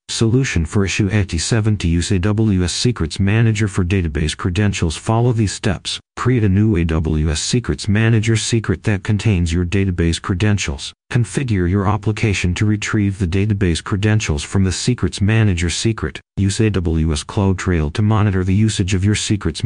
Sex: male